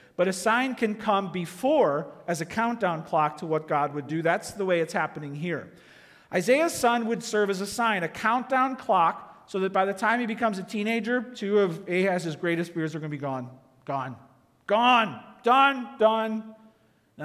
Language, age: English, 50-69